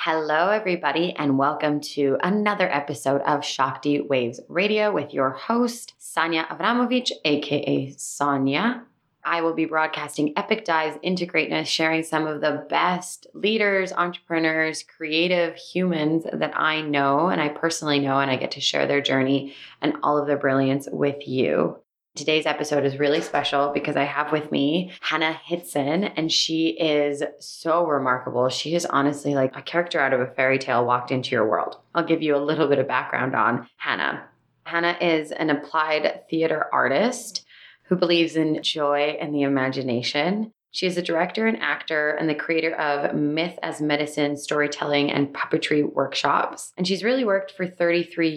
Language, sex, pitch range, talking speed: English, female, 145-170 Hz, 165 wpm